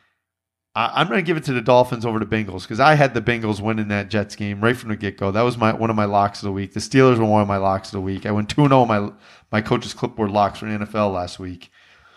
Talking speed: 290 wpm